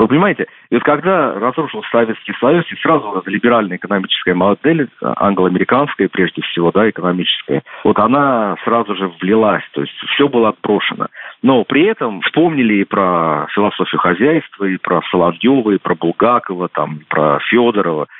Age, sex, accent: 50-69, male, native